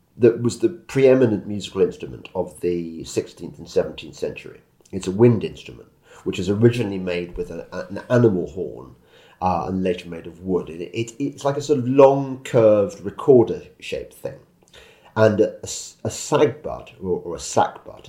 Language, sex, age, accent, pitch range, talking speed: English, male, 40-59, British, 90-115 Hz, 170 wpm